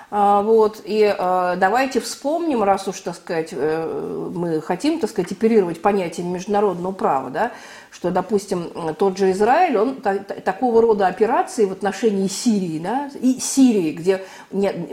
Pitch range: 185-230 Hz